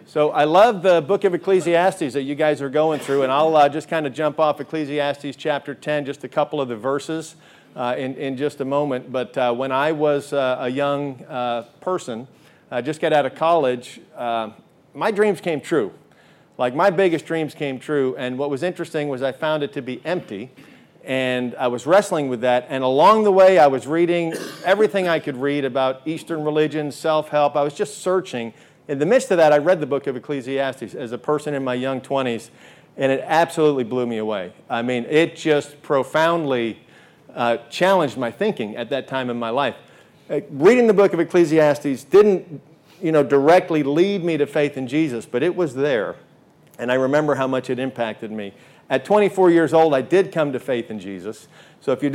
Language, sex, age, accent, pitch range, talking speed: English, male, 50-69, American, 130-160 Hz, 210 wpm